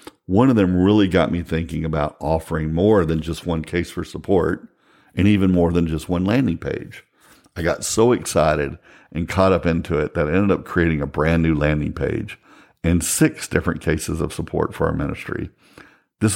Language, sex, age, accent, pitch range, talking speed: English, male, 50-69, American, 80-95 Hz, 195 wpm